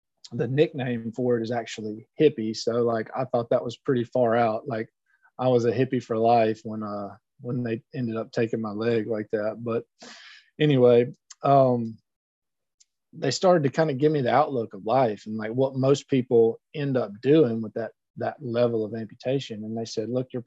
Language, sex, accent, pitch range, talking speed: English, male, American, 115-140 Hz, 195 wpm